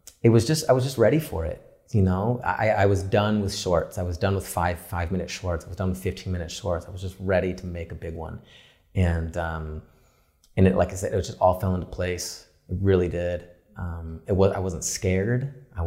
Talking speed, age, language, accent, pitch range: 240 wpm, 30-49, English, American, 85-100 Hz